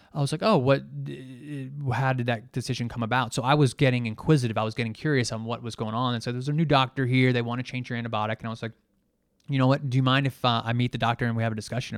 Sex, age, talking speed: male, 20-39, 295 wpm